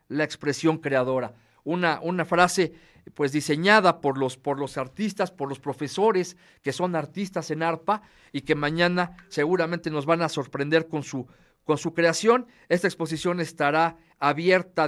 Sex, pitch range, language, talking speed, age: male, 150-180 Hz, Spanish, 155 wpm, 50-69